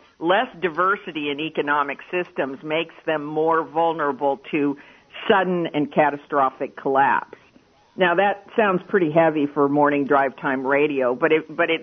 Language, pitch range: English, 140-165 Hz